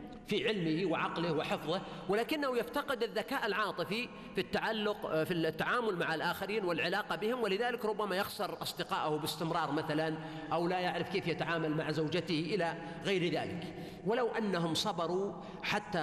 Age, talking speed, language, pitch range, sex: 40-59, 130 wpm, Arabic, 165-220 Hz, male